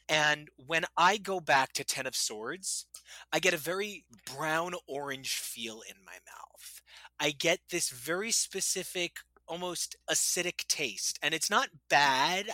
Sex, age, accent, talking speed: male, 30-49, American, 150 wpm